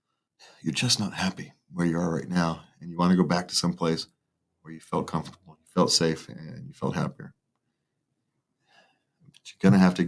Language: English